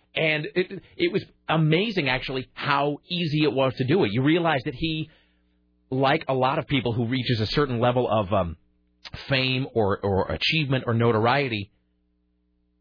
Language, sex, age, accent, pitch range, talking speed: English, male, 30-49, American, 115-155 Hz, 165 wpm